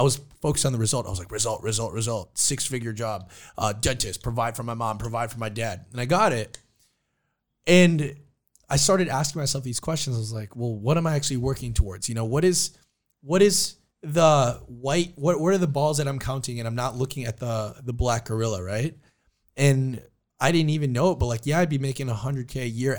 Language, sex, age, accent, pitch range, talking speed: English, male, 20-39, American, 120-160 Hz, 225 wpm